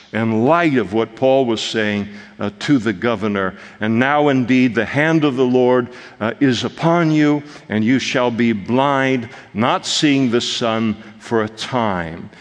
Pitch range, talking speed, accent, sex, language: 115-150 Hz, 170 wpm, American, male, English